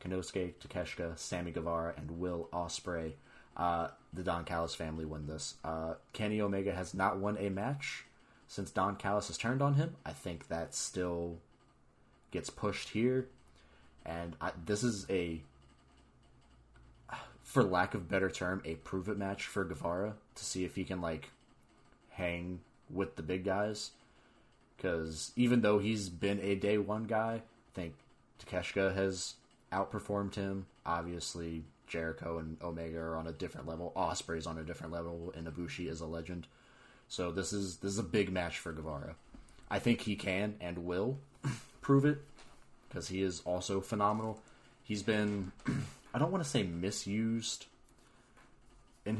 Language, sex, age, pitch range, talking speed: English, male, 20-39, 85-105 Hz, 155 wpm